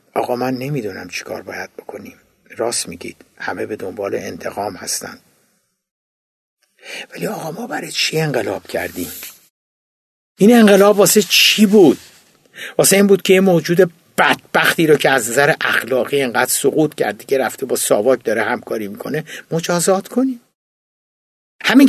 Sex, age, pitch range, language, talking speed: male, 60-79, 155-210 Hz, Persian, 135 wpm